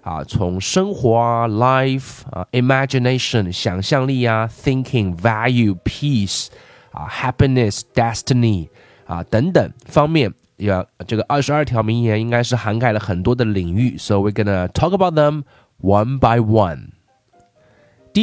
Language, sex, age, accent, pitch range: Chinese, male, 20-39, native, 105-130 Hz